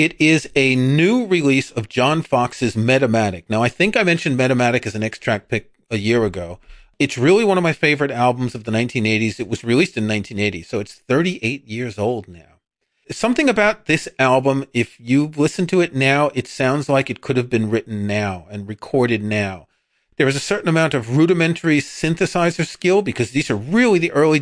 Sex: male